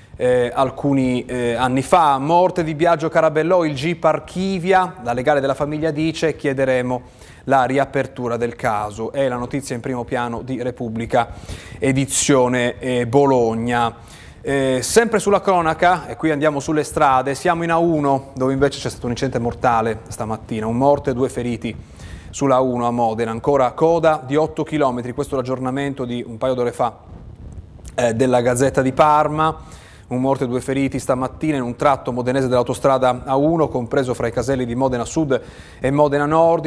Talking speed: 170 wpm